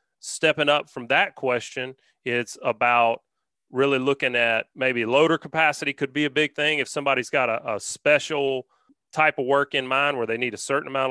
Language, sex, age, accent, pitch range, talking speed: English, male, 30-49, American, 130-160 Hz, 190 wpm